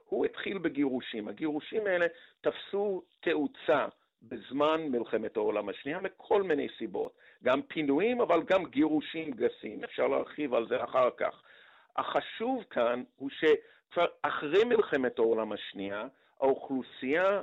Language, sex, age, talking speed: Hebrew, male, 50-69, 120 wpm